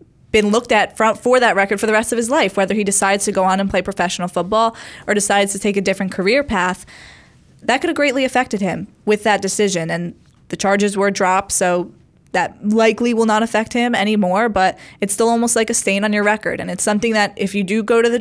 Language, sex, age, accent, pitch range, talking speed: English, female, 20-39, American, 185-215 Hz, 235 wpm